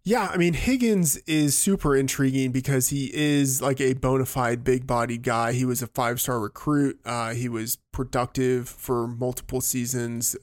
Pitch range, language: 120-140 Hz, English